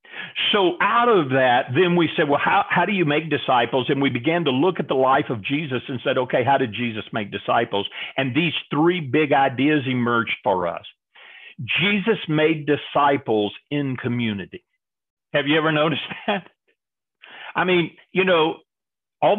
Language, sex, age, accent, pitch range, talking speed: English, male, 50-69, American, 135-165 Hz, 170 wpm